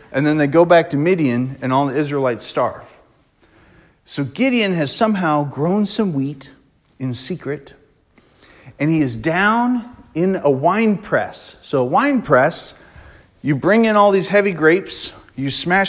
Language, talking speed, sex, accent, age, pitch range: English, 160 wpm, male, American, 40-59, 125-170 Hz